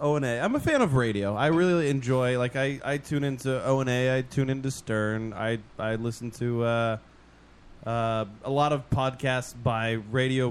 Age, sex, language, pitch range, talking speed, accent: 20-39, male, English, 110-140 Hz, 175 wpm, American